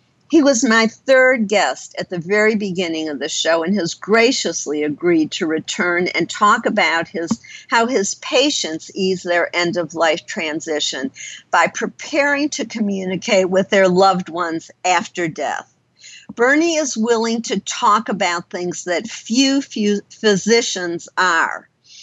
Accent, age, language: American, 50-69, English